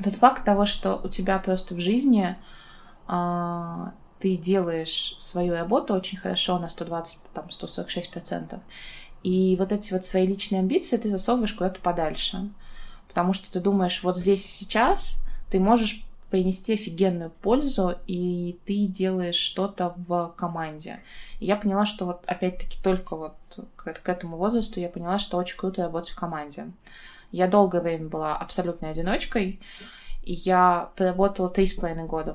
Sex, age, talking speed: female, 20-39, 150 wpm